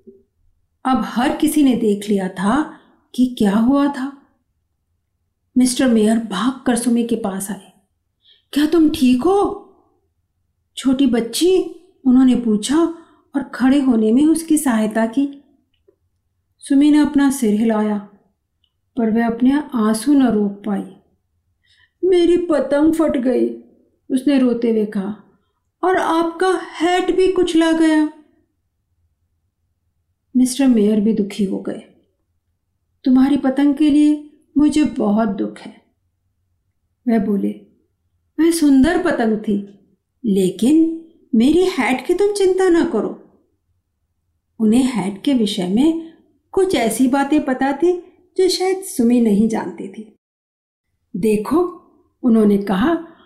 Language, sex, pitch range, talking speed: Hindi, female, 195-305 Hz, 120 wpm